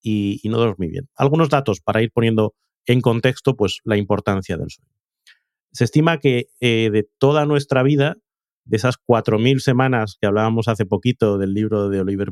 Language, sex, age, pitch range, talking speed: Spanish, male, 30-49, 110-140 Hz, 180 wpm